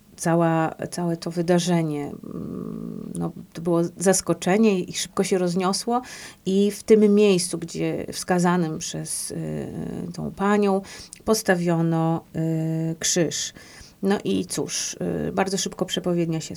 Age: 30-49